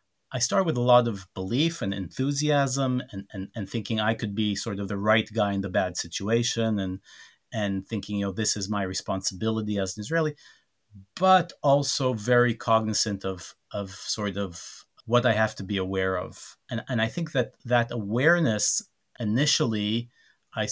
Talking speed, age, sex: 175 wpm, 30-49, male